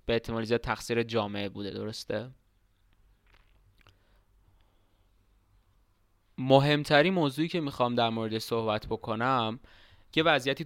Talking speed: 85 wpm